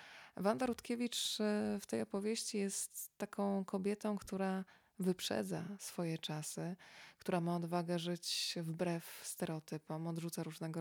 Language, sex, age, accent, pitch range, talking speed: Polish, female, 20-39, native, 170-200 Hz, 110 wpm